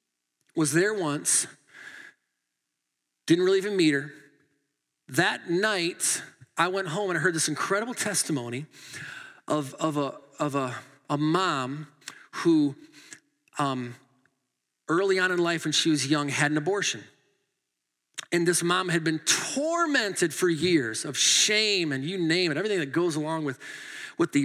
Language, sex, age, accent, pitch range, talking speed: English, male, 40-59, American, 140-200 Hz, 145 wpm